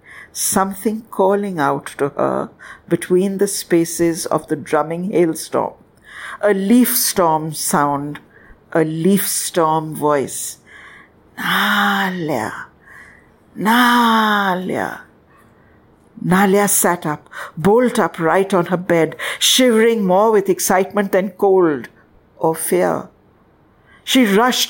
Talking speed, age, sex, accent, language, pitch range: 95 wpm, 60-79, female, Indian, English, 170-210 Hz